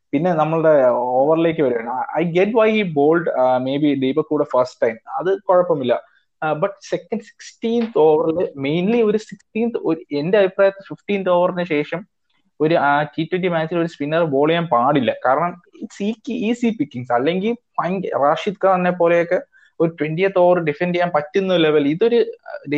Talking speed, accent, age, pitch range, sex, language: 110 wpm, Indian, 20-39, 150-195 Hz, male, English